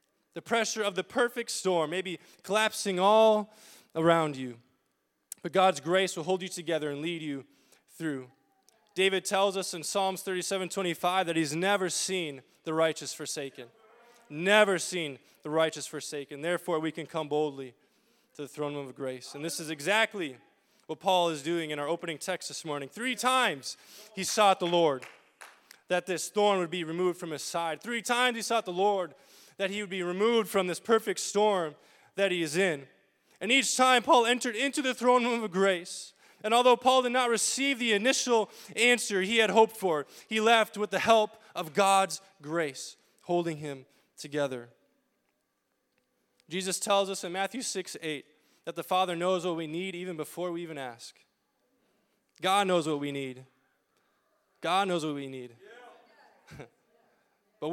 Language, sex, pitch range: English, male, 160-210 Hz